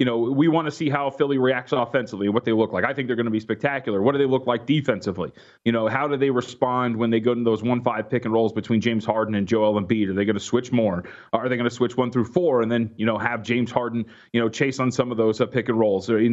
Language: English